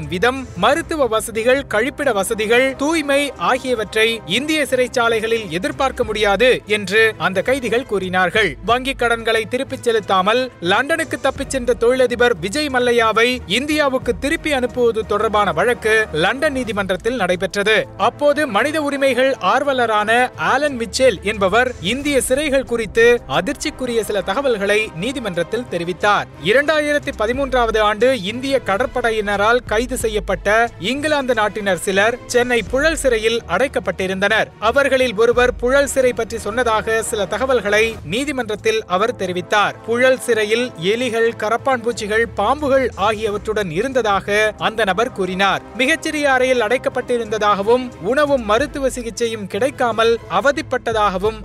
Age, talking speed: 30-49, 100 wpm